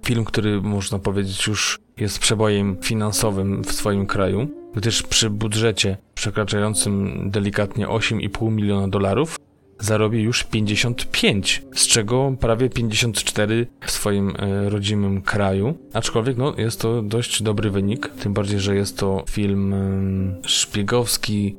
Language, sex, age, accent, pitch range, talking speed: Polish, male, 20-39, native, 100-115 Hz, 120 wpm